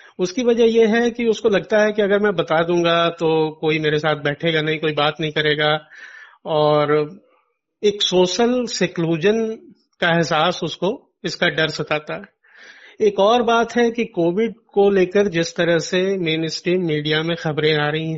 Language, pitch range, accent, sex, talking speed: Hindi, 160-210 Hz, native, male, 170 wpm